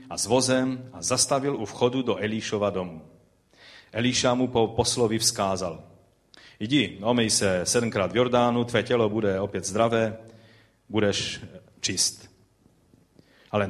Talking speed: 125 wpm